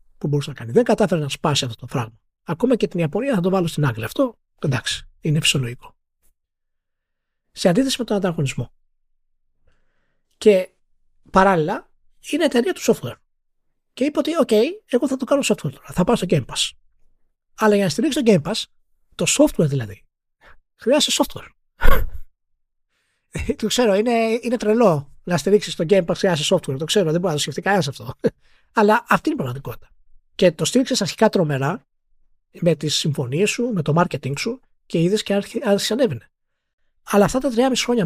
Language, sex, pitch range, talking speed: Greek, male, 140-225 Hz, 170 wpm